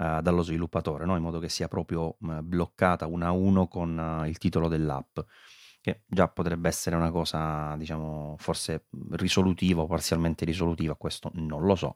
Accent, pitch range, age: native, 85-115 Hz, 30-49